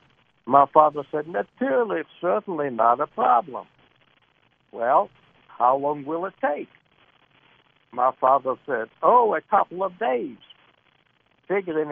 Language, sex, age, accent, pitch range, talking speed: English, male, 60-79, American, 135-165 Hz, 120 wpm